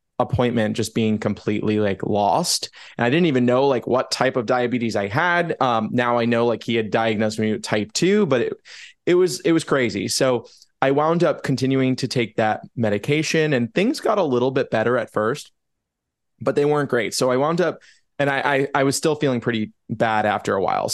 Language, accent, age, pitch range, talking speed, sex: English, American, 20-39, 110-135 Hz, 215 wpm, male